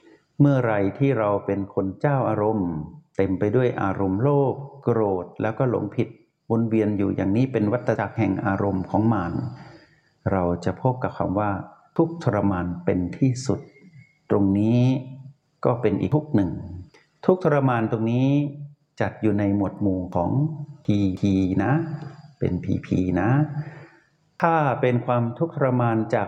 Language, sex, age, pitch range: Thai, male, 60-79, 100-145 Hz